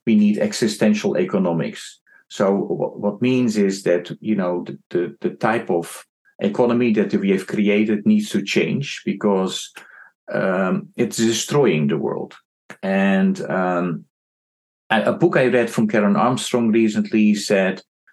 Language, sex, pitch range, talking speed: English, male, 100-160 Hz, 135 wpm